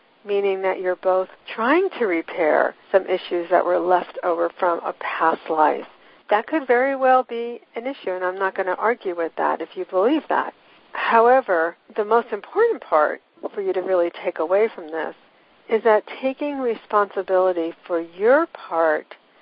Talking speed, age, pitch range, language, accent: 175 wpm, 60-79, 180-235 Hz, English, American